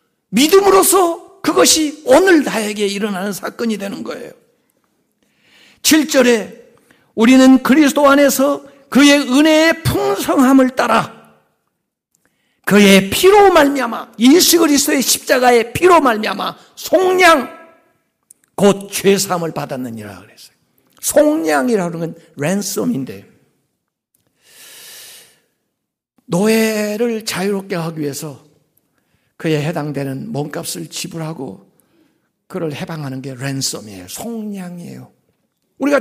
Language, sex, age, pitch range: Korean, male, 60-79, 190-310 Hz